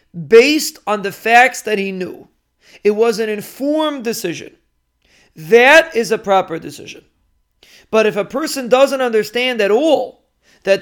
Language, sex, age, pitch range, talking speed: English, male, 40-59, 195-250 Hz, 145 wpm